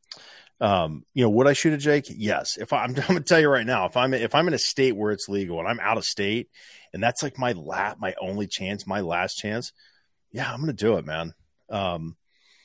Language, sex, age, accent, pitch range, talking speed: English, male, 30-49, American, 100-130 Hz, 250 wpm